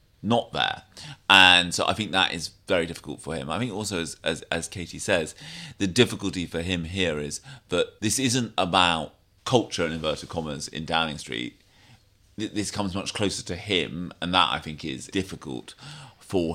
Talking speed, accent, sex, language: 185 wpm, British, male, English